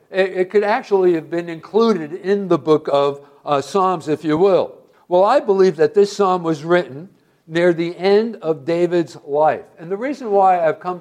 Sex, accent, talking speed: male, American, 190 wpm